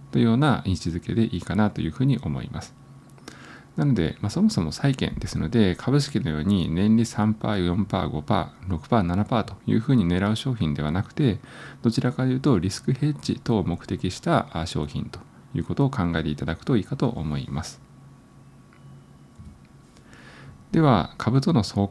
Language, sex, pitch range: Japanese, male, 90-125 Hz